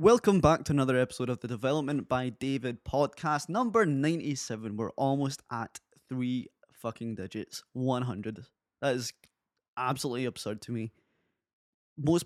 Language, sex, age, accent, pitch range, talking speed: English, male, 20-39, British, 110-130 Hz, 130 wpm